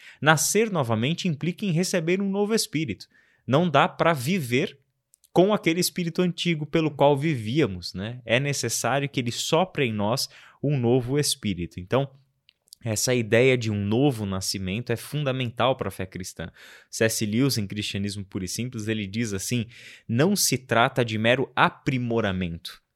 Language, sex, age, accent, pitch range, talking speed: Portuguese, male, 20-39, Brazilian, 105-140 Hz, 155 wpm